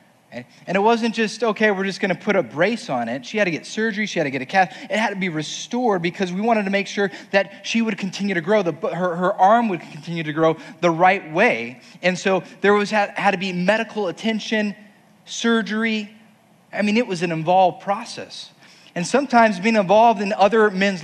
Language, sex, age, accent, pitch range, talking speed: English, male, 30-49, American, 175-215 Hz, 225 wpm